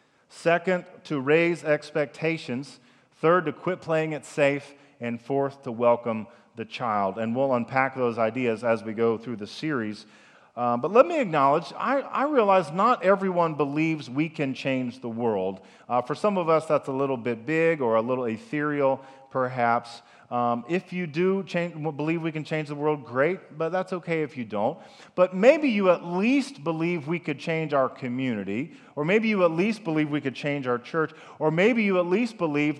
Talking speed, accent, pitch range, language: 190 wpm, American, 120-165 Hz, English